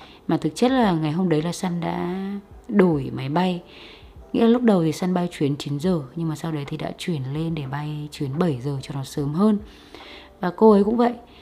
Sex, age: female, 20-39